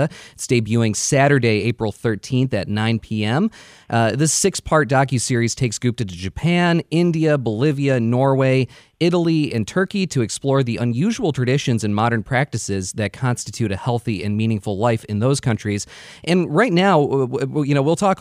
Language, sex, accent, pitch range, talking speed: English, male, American, 115-150 Hz, 155 wpm